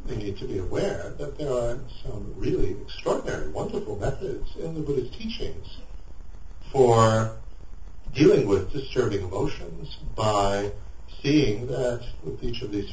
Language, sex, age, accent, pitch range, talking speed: English, male, 60-79, American, 90-125 Hz, 135 wpm